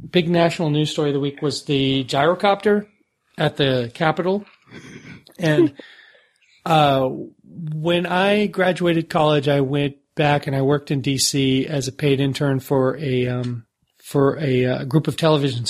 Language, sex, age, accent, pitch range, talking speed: English, male, 40-59, American, 135-165 Hz, 155 wpm